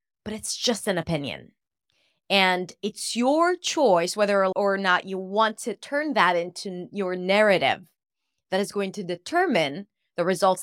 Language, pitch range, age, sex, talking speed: English, 190-250 Hz, 20-39, female, 150 wpm